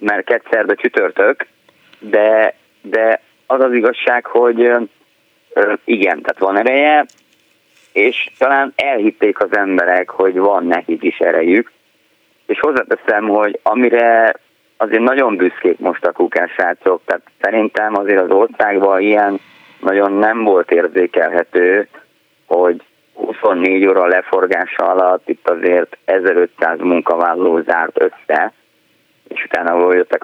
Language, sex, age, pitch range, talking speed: Hungarian, male, 30-49, 95-125 Hz, 115 wpm